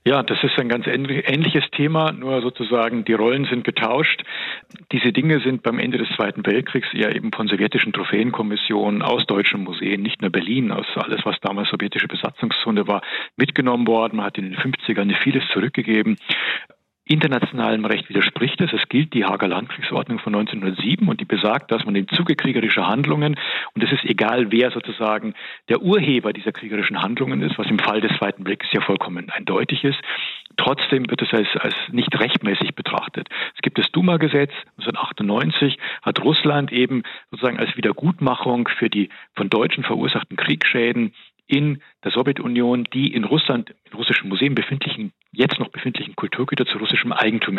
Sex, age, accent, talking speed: male, 40-59, German, 165 wpm